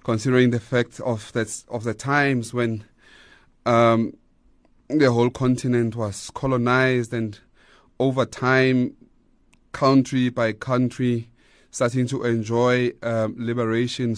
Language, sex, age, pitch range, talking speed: English, male, 30-49, 115-130 Hz, 110 wpm